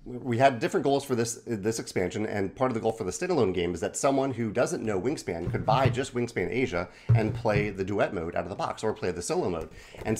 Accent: American